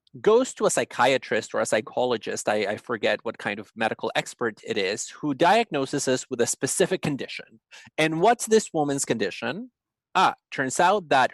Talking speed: 175 wpm